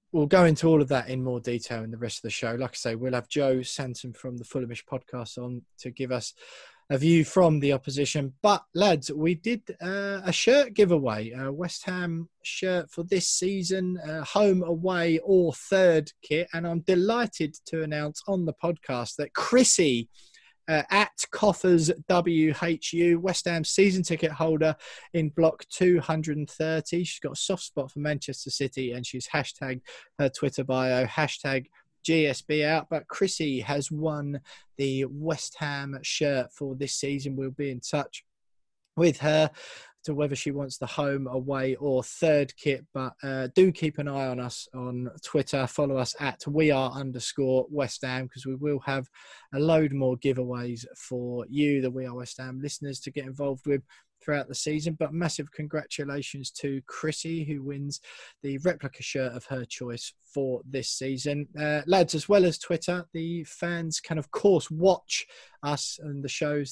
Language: English